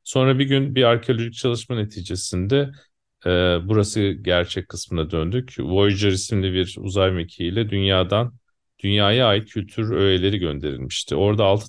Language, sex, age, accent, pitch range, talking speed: Turkish, male, 40-59, native, 95-115 Hz, 130 wpm